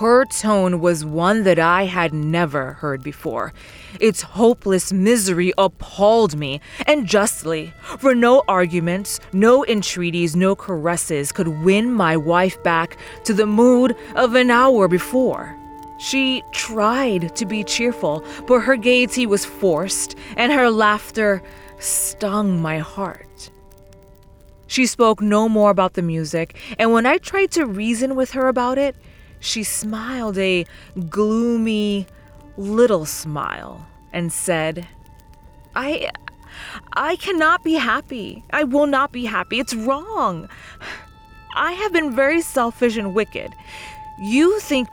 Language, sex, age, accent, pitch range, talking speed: English, female, 20-39, American, 175-255 Hz, 130 wpm